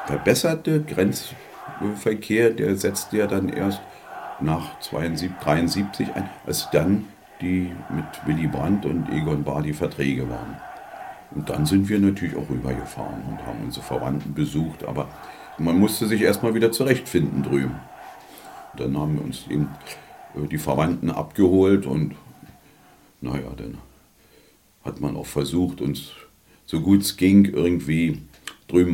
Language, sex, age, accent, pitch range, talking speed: German, male, 50-69, German, 70-90 Hz, 135 wpm